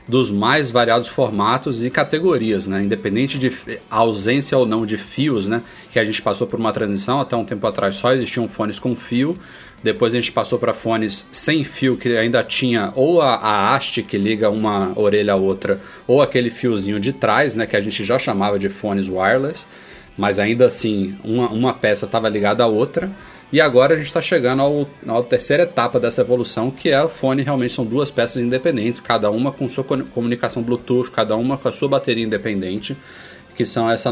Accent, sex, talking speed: Brazilian, male, 200 wpm